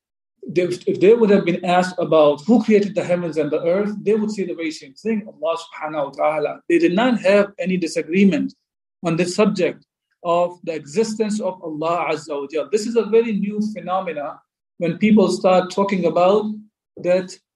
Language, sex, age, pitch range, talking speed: English, male, 50-69, 175-220 Hz, 185 wpm